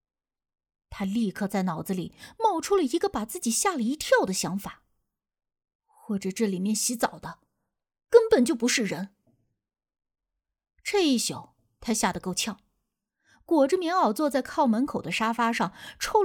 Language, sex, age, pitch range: Chinese, female, 20-39, 195-310 Hz